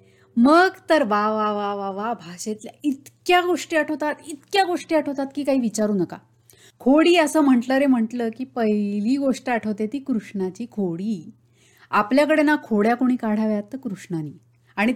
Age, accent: 30-49, native